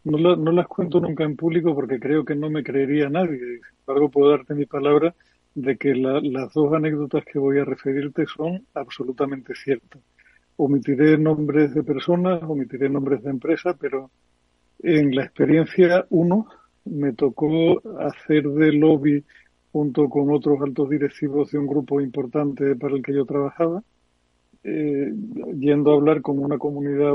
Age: 50-69